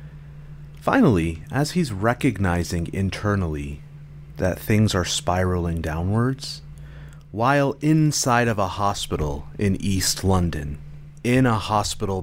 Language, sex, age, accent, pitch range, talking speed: English, male, 30-49, American, 85-145 Hz, 105 wpm